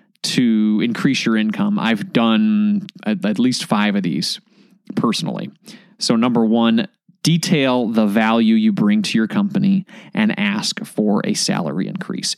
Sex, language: male, English